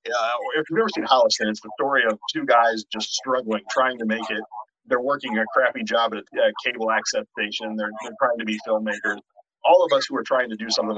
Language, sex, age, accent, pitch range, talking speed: English, male, 30-49, American, 110-140 Hz, 245 wpm